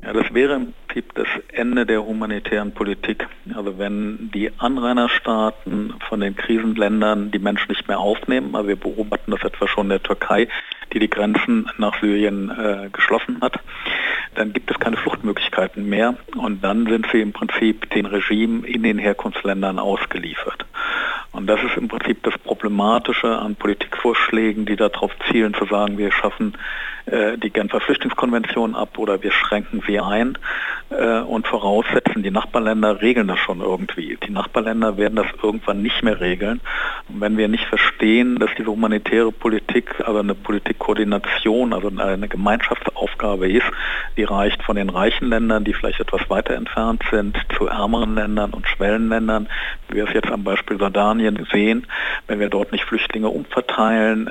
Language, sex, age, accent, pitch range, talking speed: German, male, 50-69, German, 105-110 Hz, 160 wpm